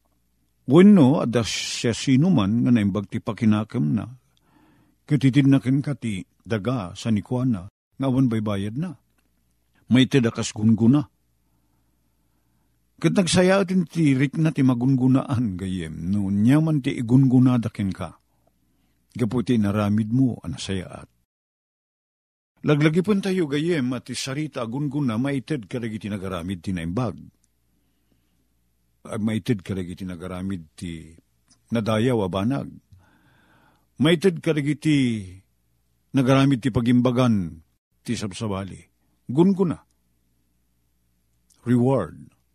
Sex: male